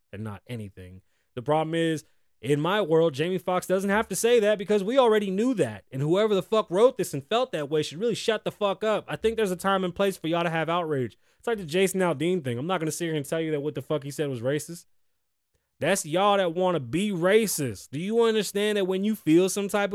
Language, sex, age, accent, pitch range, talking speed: English, male, 20-39, American, 120-195 Hz, 265 wpm